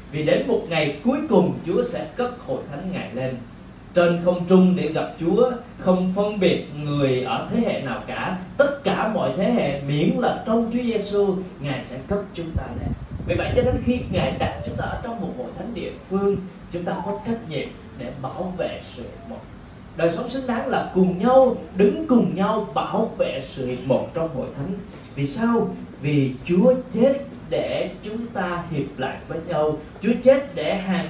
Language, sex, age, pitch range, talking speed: Vietnamese, male, 20-39, 165-245 Hz, 200 wpm